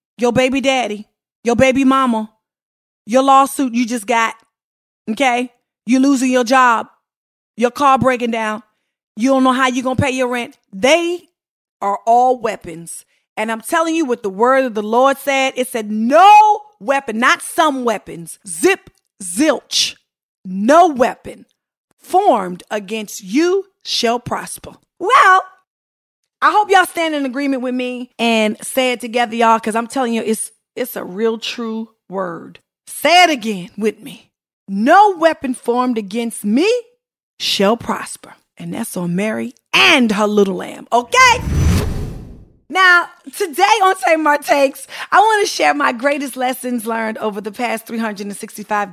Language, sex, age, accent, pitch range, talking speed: English, female, 40-59, American, 215-280 Hz, 150 wpm